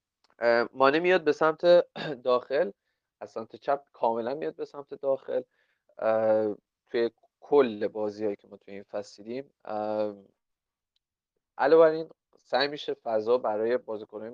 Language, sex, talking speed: Persian, male, 115 wpm